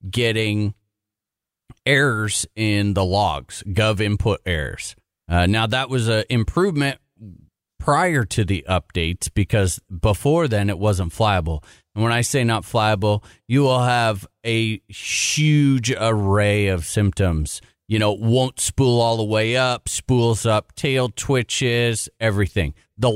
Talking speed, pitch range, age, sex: 135 wpm, 95-120 Hz, 30-49, male